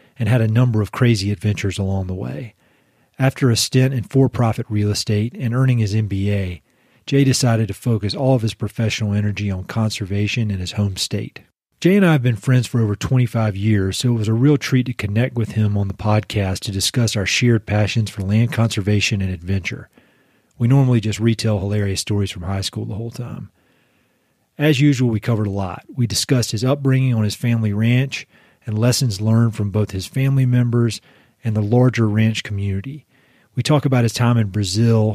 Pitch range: 105-125 Hz